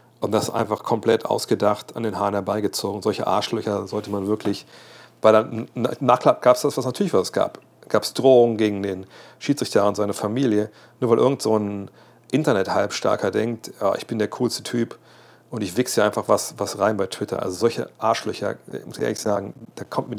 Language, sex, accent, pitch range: German, male, German, 105-130 Hz